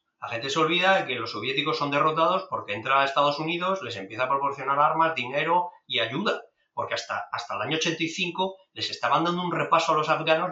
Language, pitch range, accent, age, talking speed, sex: Spanish, 140-185 Hz, Spanish, 30-49, 205 wpm, male